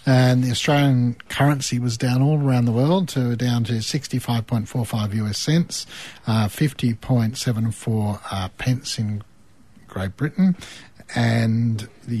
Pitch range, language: 105-125 Hz, English